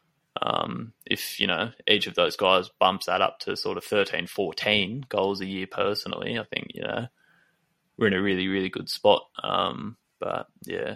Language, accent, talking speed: English, Australian, 185 wpm